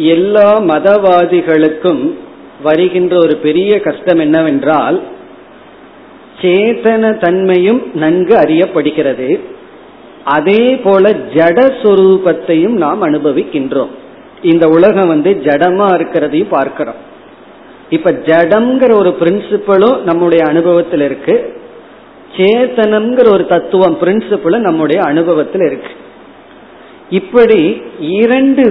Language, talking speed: Tamil, 80 wpm